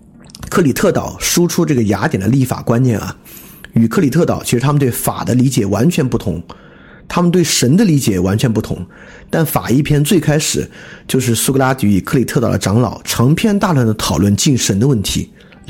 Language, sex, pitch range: Chinese, male, 105-155 Hz